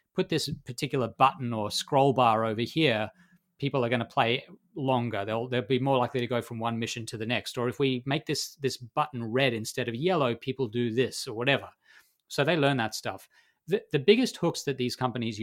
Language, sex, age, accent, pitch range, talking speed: English, male, 30-49, Australian, 115-150 Hz, 220 wpm